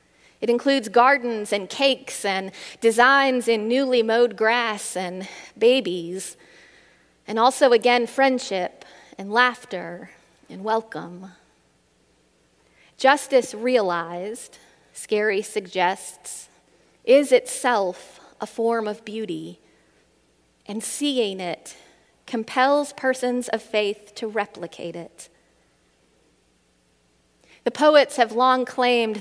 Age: 30-49